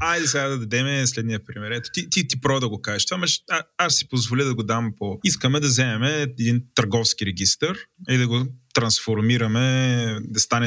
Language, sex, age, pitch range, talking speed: Bulgarian, male, 20-39, 110-135 Hz, 195 wpm